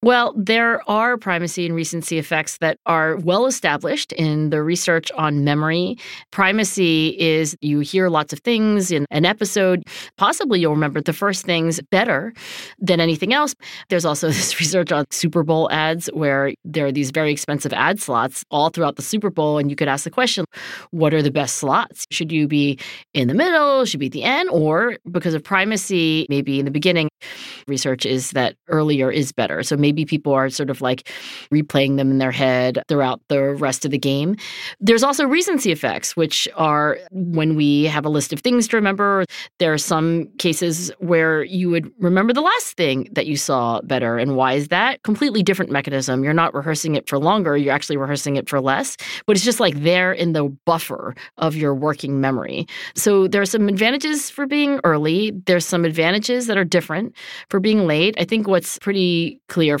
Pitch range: 145-190 Hz